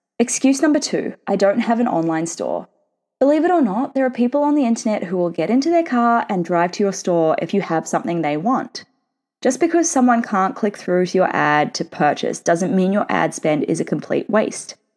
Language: English